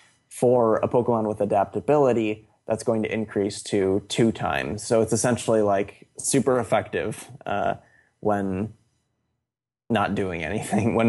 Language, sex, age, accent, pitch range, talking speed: English, male, 20-39, American, 105-115 Hz, 130 wpm